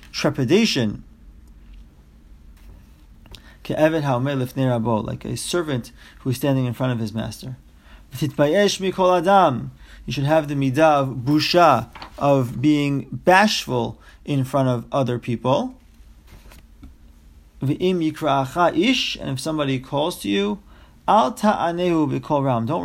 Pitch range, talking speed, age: 120-165 Hz, 85 wpm, 40-59